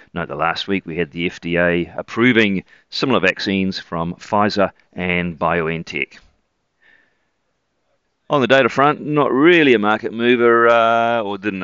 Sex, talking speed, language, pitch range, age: male, 140 wpm, English, 90-125 Hz, 40-59